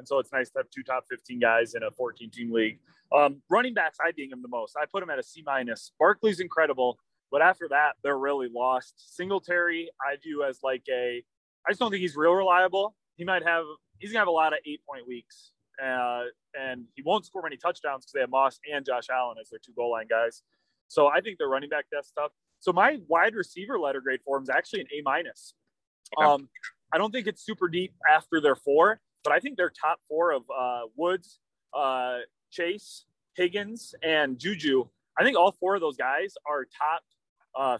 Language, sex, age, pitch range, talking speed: English, male, 20-39, 130-185 Hz, 215 wpm